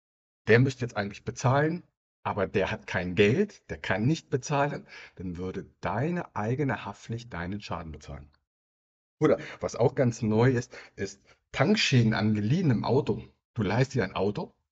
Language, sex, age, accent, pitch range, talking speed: German, male, 60-79, German, 100-130 Hz, 155 wpm